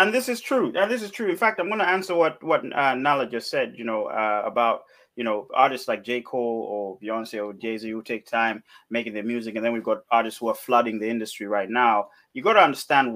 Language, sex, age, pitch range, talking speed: English, male, 30-49, 115-155 Hz, 255 wpm